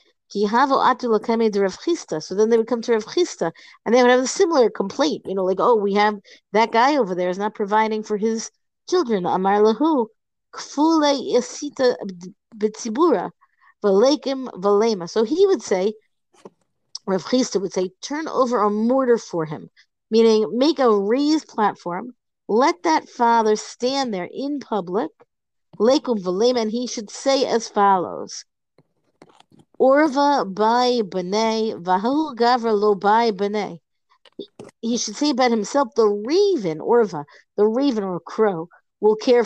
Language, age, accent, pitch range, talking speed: English, 50-69, American, 200-260 Hz, 130 wpm